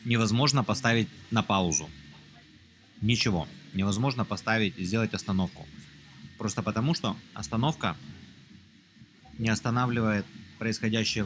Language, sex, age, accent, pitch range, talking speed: Russian, male, 30-49, native, 100-120 Hz, 90 wpm